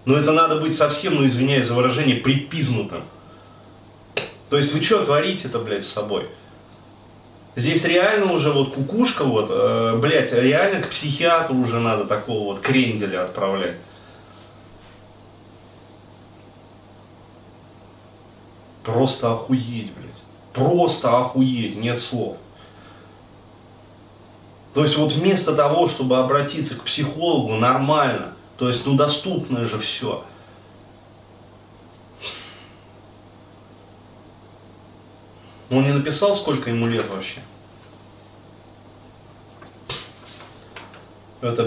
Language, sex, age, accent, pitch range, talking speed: Russian, male, 30-49, native, 105-135 Hz, 95 wpm